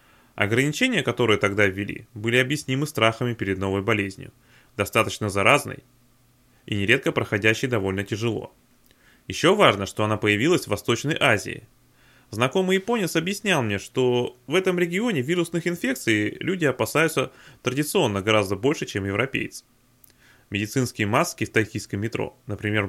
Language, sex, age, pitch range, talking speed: Russian, male, 20-39, 110-150 Hz, 125 wpm